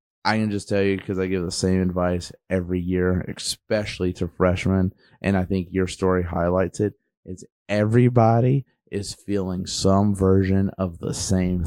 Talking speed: 165 wpm